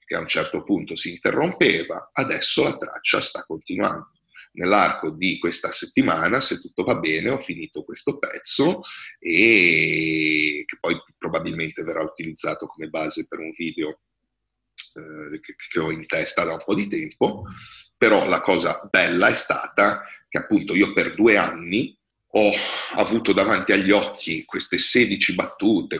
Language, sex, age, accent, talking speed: Italian, male, 40-59, native, 150 wpm